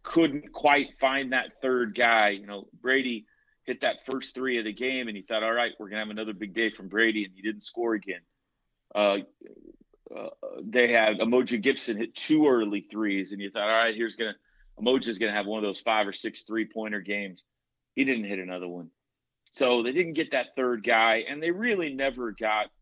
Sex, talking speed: male, 220 wpm